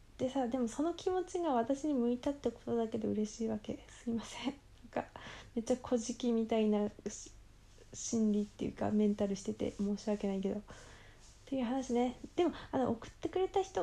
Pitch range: 210-250 Hz